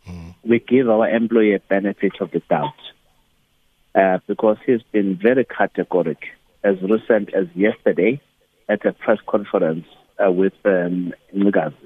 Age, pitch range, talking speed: 60-79, 95-115 Hz, 130 wpm